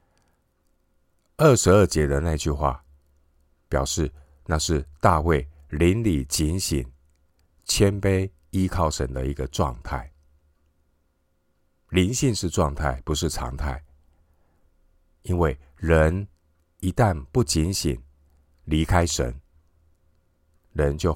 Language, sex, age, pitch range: Chinese, male, 50-69, 70-85 Hz